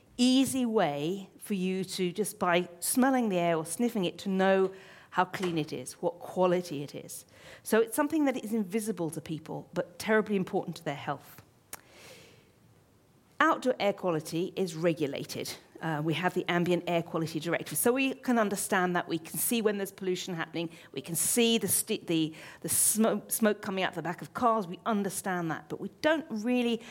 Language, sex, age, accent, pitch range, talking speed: English, female, 40-59, British, 170-230 Hz, 185 wpm